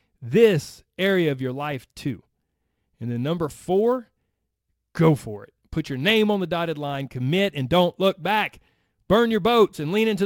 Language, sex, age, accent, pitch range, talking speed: English, male, 40-59, American, 130-175 Hz, 180 wpm